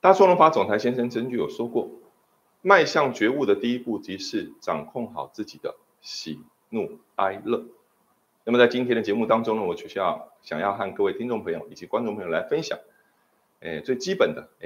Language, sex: Chinese, male